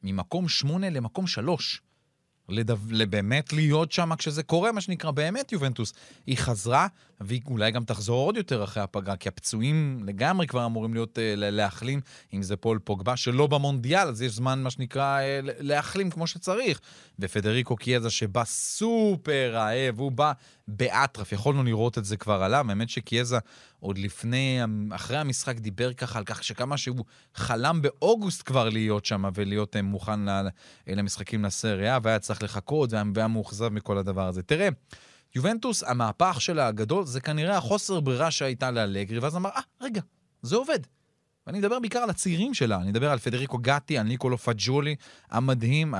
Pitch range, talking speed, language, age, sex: 110-150 Hz, 165 wpm, Hebrew, 30-49, male